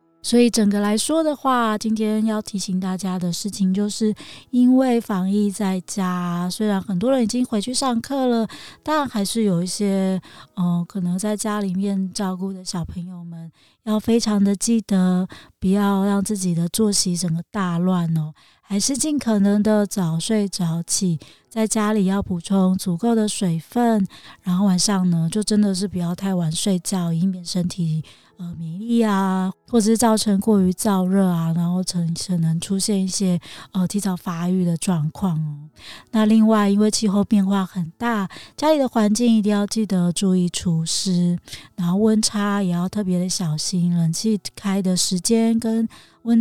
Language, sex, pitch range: Chinese, female, 180-215 Hz